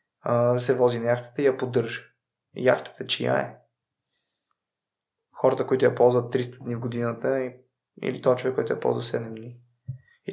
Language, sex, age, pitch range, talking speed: Bulgarian, male, 20-39, 120-145 Hz, 155 wpm